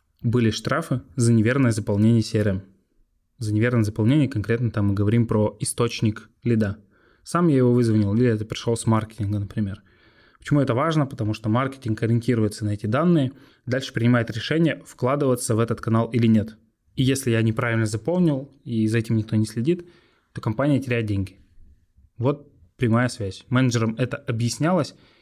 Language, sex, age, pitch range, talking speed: Russian, male, 20-39, 110-125 Hz, 155 wpm